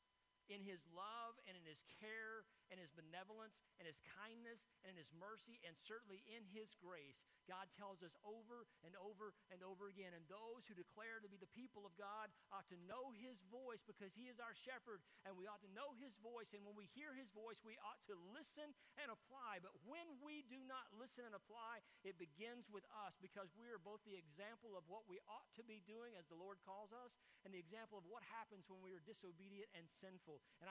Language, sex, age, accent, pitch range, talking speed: English, male, 50-69, American, 185-220 Hz, 220 wpm